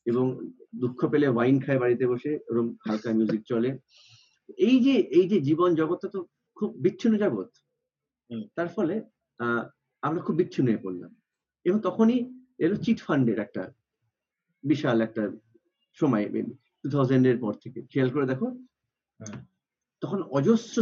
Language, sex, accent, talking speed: Bengali, male, native, 85 wpm